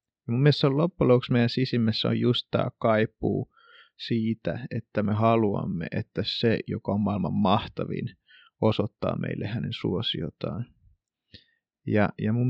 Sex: male